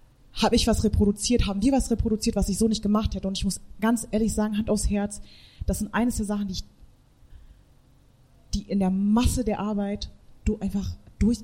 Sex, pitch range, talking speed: female, 185-235 Hz, 205 wpm